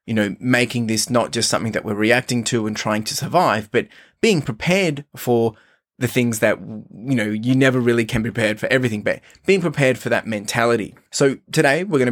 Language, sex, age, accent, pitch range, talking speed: English, male, 20-39, Australian, 110-135 Hz, 210 wpm